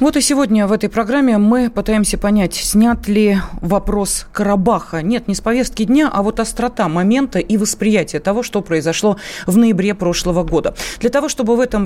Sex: female